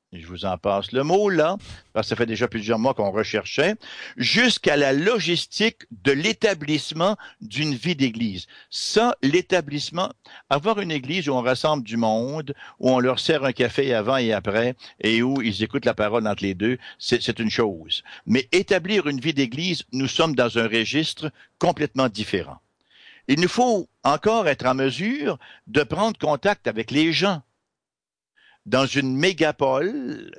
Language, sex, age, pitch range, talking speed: English, male, 60-79, 125-190 Hz, 165 wpm